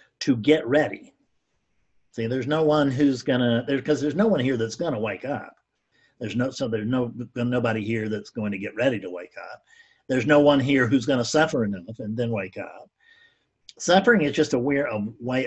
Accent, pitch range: American, 110-145 Hz